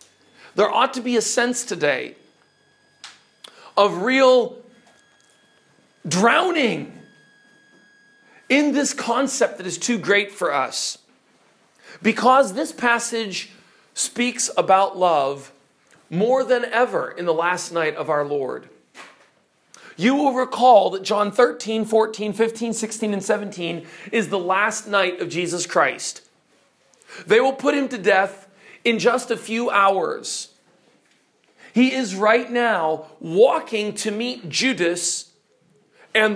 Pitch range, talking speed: 195-245 Hz, 120 wpm